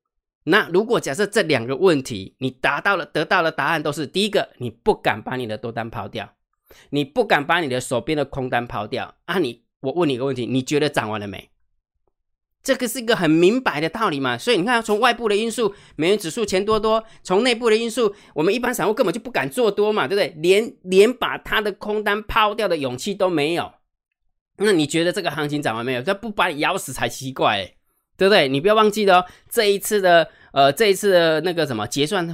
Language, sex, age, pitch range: Chinese, male, 20-39, 130-200 Hz